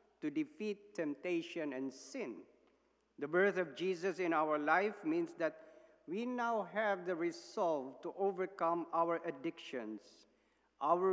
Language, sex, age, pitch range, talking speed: English, male, 50-69, 150-210 Hz, 130 wpm